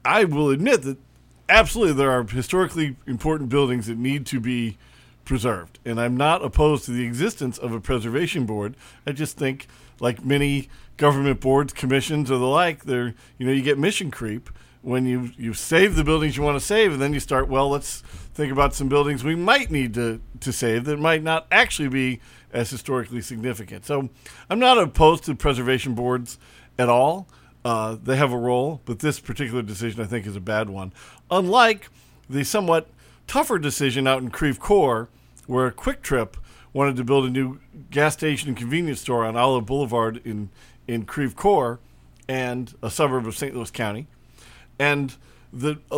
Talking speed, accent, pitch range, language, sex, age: 185 wpm, American, 120-145 Hz, English, male, 40-59